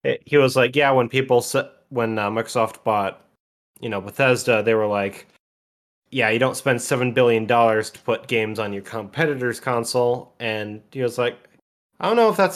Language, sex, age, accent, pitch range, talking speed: English, male, 20-39, American, 105-125 Hz, 180 wpm